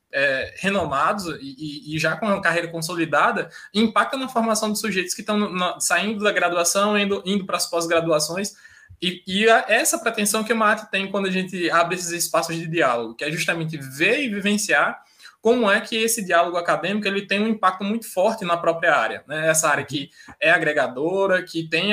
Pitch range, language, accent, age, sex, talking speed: 160-205 Hz, Portuguese, Brazilian, 20-39, male, 195 wpm